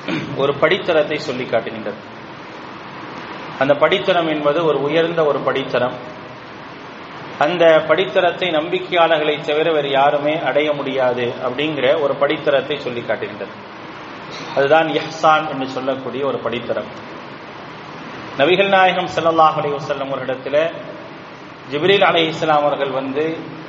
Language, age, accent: English, 30-49, Indian